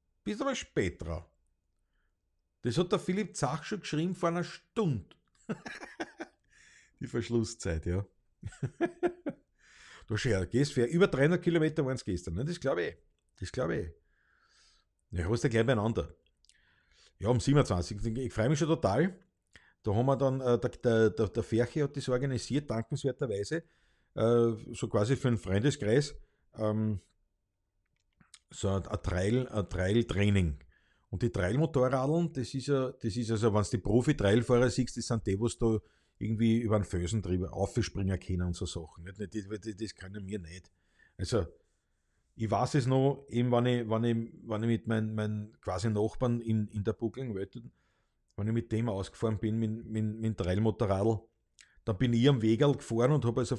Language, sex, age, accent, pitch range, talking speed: German, male, 50-69, Austrian, 100-130 Hz, 160 wpm